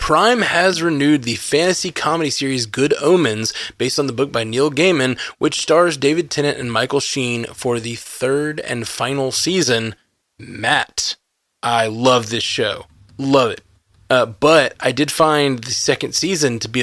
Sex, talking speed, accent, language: male, 165 wpm, American, English